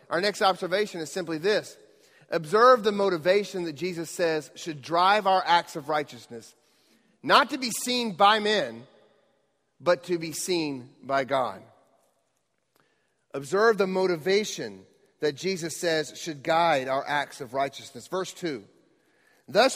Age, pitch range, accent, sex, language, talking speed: 40-59, 170-220 Hz, American, male, English, 135 wpm